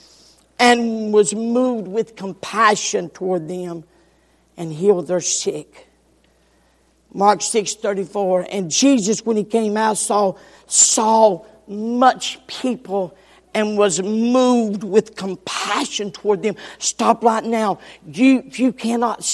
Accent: American